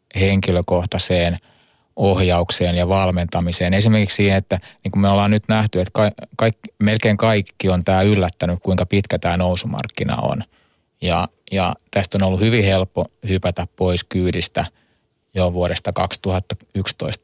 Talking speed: 115 wpm